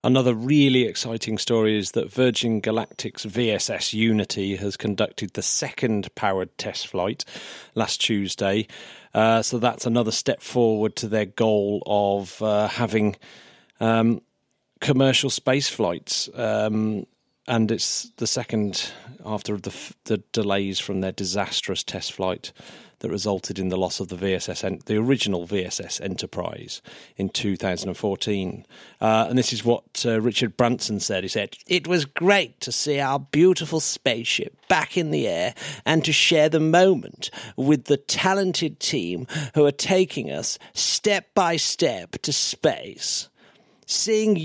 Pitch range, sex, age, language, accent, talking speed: 105-160 Hz, male, 40-59, English, British, 140 wpm